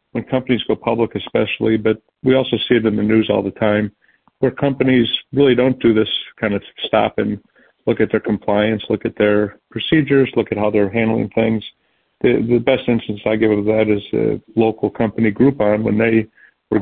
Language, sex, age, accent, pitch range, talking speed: English, male, 40-59, American, 105-120 Hz, 200 wpm